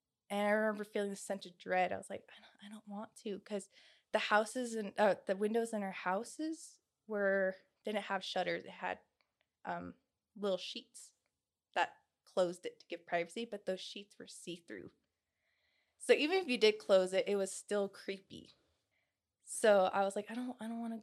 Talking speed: 195 wpm